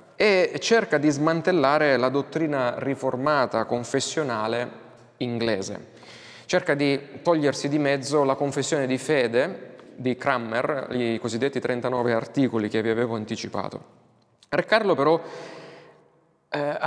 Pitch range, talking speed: 120-150 Hz, 115 wpm